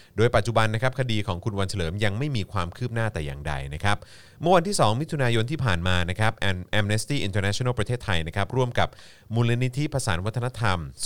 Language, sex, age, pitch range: Thai, male, 30-49, 95-125 Hz